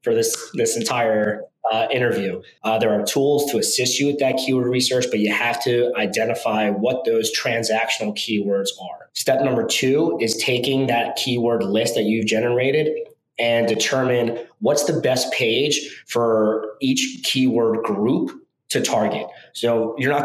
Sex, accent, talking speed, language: male, American, 155 wpm, English